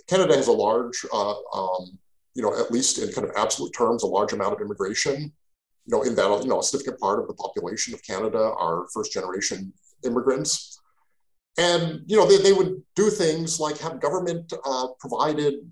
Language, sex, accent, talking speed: English, male, American, 195 wpm